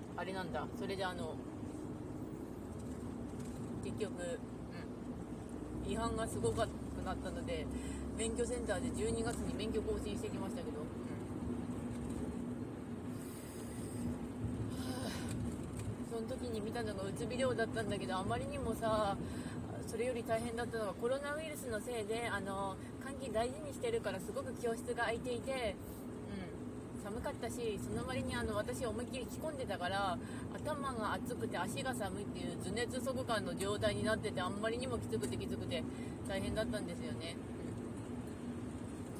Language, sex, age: Japanese, female, 20-39